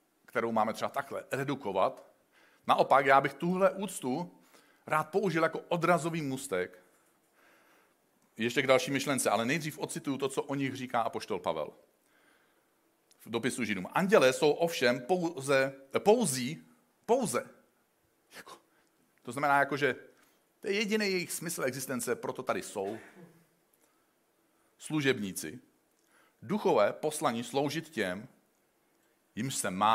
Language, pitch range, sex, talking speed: Czech, 140-180 Hz, male, 120 wpm